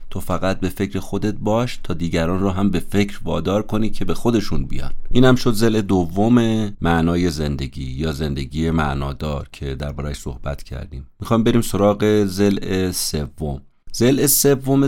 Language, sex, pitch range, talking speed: Persian, male, 75-105 Hz, 155 wpm